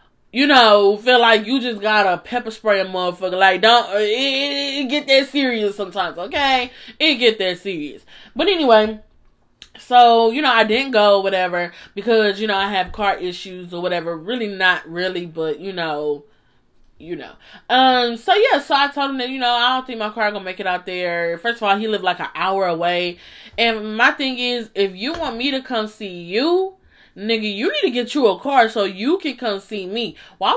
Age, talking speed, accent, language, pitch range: 20-39, 210 wpm, American, English, 200-275 Hz